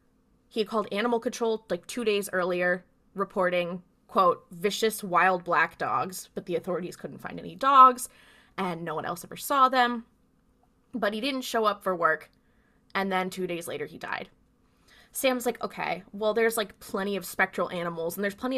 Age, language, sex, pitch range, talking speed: 20-39, English, female, 185-235 Hz, 180 wpm